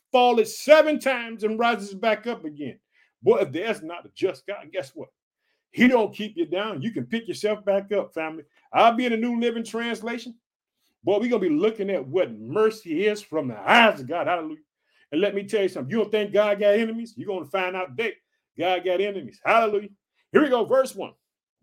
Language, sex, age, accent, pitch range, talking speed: English, male, 50-69, American, 200-275 Hz, 220 wpm